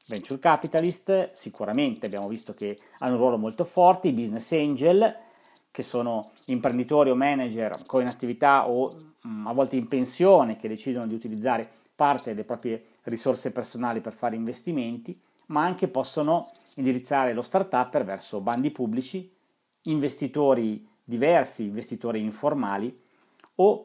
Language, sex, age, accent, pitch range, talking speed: Italian, male, 40-59, native, 125-165 Hz, 130 wpm